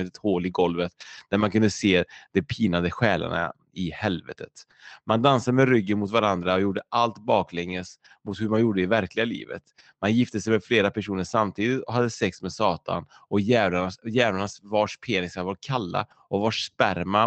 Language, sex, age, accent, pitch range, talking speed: Swedish, male, 30-49, Norwegian, 90-115 Hz, 175 wpm